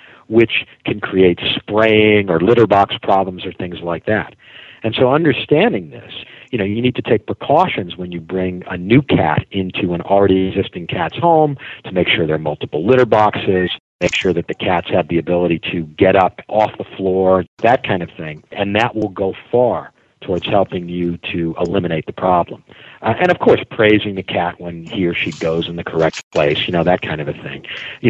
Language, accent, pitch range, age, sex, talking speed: English, American, 85-110 Hz, 50-69, male, 205 wpm